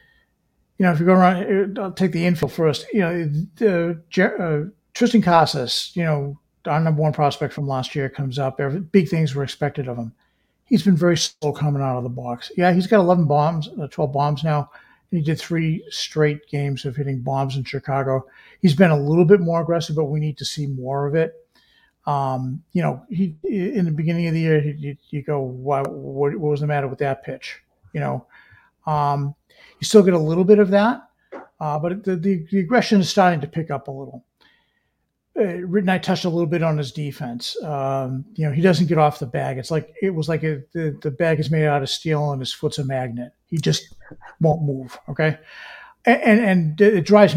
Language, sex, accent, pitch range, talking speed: English, male, American, 145-180 Hz, 220 wpm